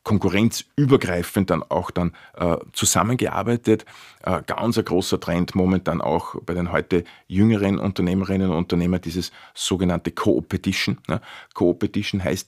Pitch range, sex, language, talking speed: 90-105 Hz, male, German, 130 wpm